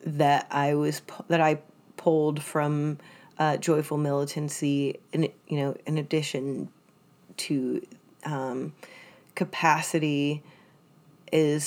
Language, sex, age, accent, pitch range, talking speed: English, female, 30-49, American, 150-180 Hz, 100 wpm